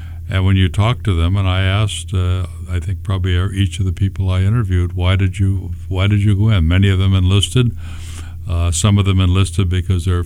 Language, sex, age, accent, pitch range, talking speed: English, male, 60-79, American, 85-100 Hz, 210 wpm